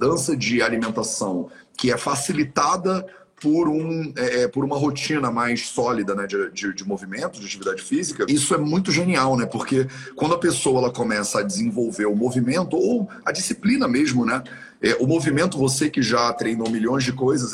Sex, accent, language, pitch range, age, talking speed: male, Brazilian, Portuguese, 120-170 Hz, 40-59, 180 wpm